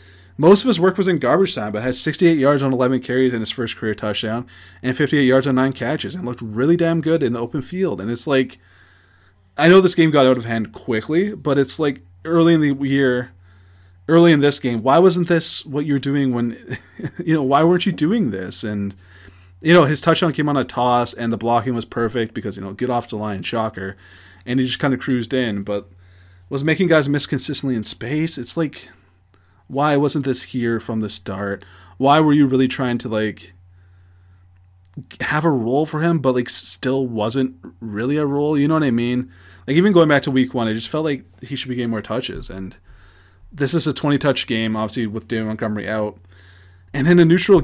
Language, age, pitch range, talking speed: English, 20-39, 100-145 Hz, 220 wpm